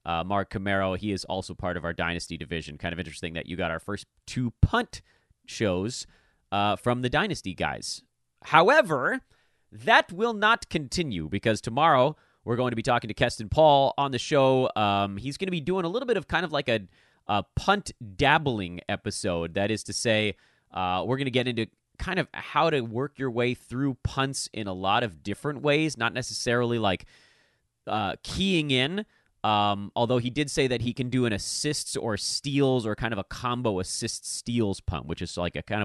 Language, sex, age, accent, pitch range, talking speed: English, male, 30-49, American, 95-140 Hz, 200 wpm